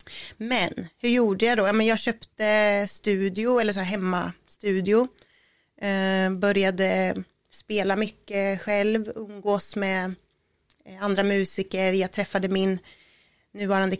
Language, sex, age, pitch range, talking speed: Swedish, female, 30-49, 190-225 Hz, 105 wpm